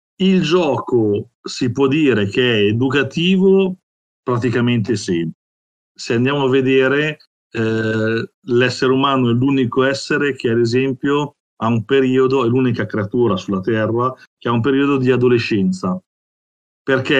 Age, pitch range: 50-69, 110-150 Hz